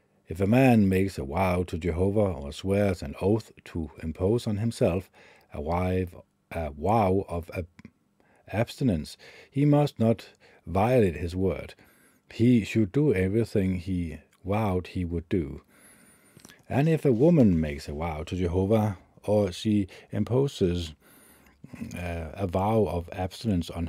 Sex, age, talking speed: male, 50-69, 130 wpm